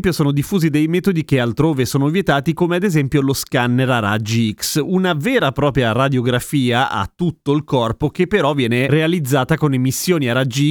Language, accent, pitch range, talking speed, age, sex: Italian, native, 125-170 Hz, 185 wpm, 30-49, male